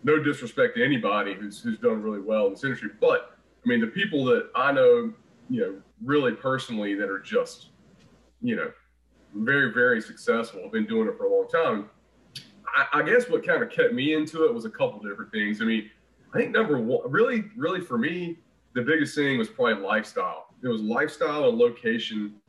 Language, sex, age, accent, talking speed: English, male, 30-49, American, 205 wpm